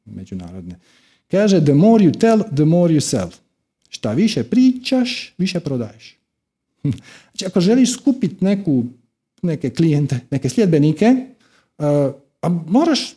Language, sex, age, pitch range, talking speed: Croatian, male, 50-69, 135-200 Hz, 125 wpm